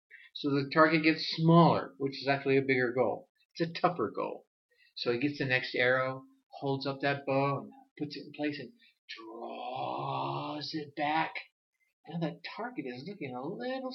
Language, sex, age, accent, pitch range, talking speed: English, male, 50-69, American, 145-245 Hz, 170 wpm